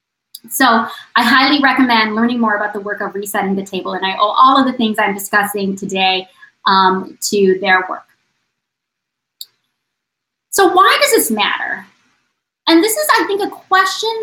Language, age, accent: English, 20-39, American